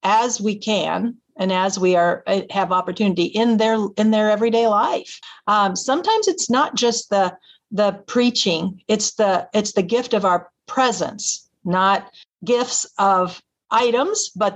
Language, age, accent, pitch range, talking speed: English, 50-69, American, 190-230 Hz, 150 wpm